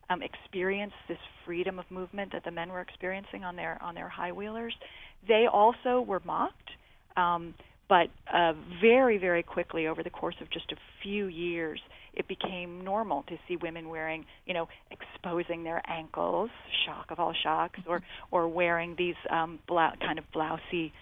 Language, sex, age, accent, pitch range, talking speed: English, female, 40-59, American, 165-195 Hz, 170 wpm